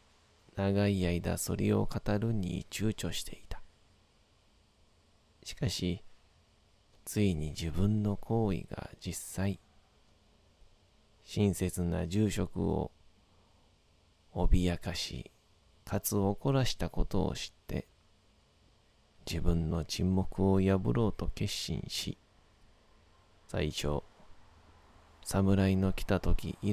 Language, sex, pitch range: Japanese, male, 85-100 Hz